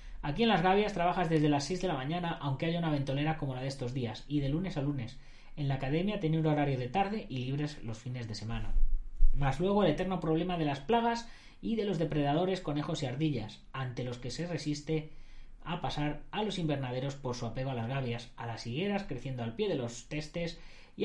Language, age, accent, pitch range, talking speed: Spanish, 20-39, Spanish, 125-175 Hz, 230 wpm